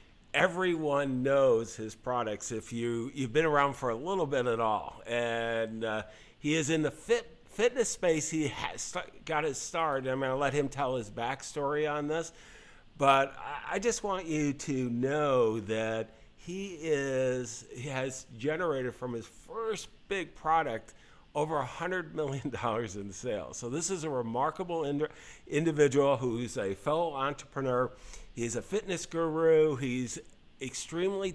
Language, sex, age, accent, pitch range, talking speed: English, male, 50-69, American, 125-170 Hz, 155 wpm